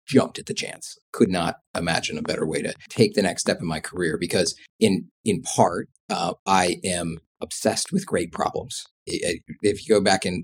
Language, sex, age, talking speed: English, male, 40-59, 205 wpm